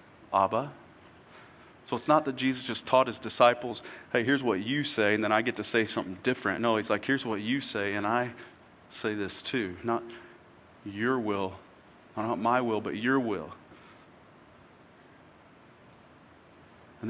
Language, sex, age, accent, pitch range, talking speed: English, male, 30-49, American, 110-145 Hz, 160 wpm